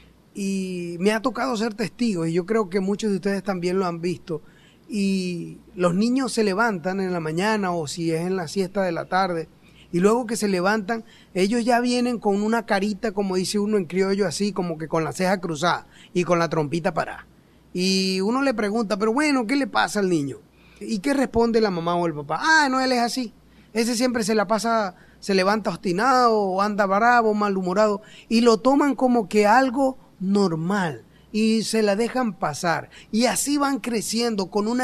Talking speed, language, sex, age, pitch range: 200 wpm, Spanish, male, 30-49, 185-230 Hz